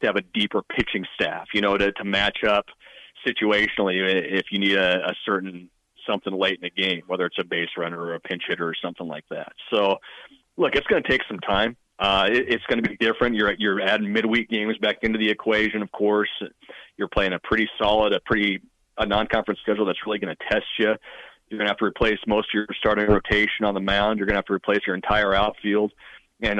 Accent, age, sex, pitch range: American, 30-49, male, 95-110 Hz